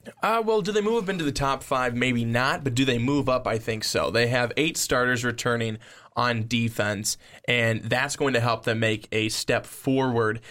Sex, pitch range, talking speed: male, 115-135 Hz, 210 wpm